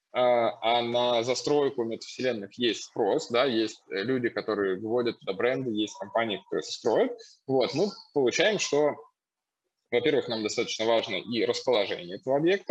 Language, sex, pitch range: Russian, male, 110-150 Hz